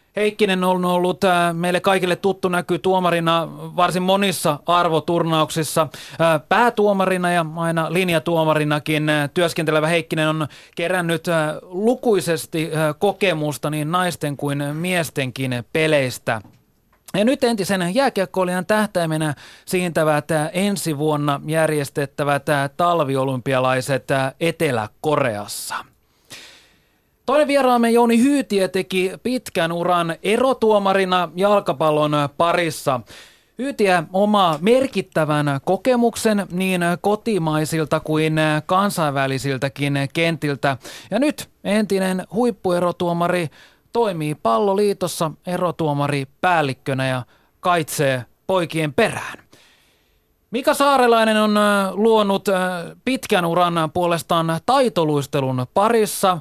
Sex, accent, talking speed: male, native, 80 wpm